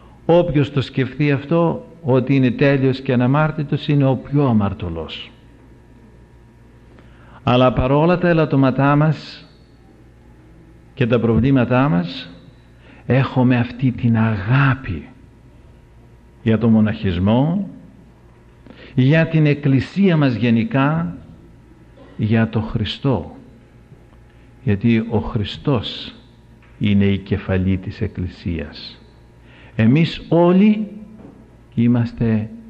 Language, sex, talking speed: English, male, 90 wpm